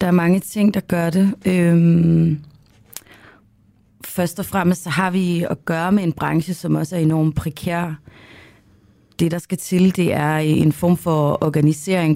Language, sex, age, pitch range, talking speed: Danish, female, 30-49, 150-175 Hz, 165 wpm